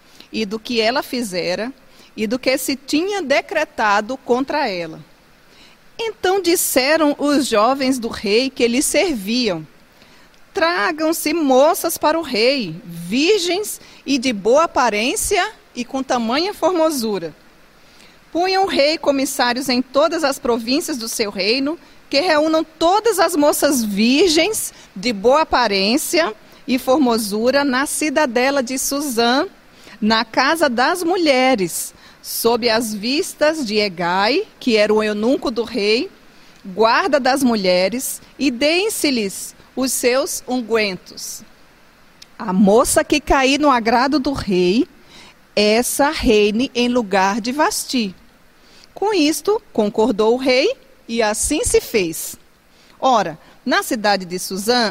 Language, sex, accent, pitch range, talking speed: Portuguese, female, Brazilian, 220-305 Hz, 125 wpm